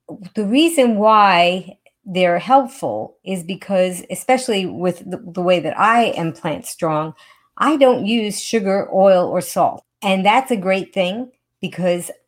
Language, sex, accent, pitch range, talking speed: English, female, American, 175-215 Hz, 145 wpm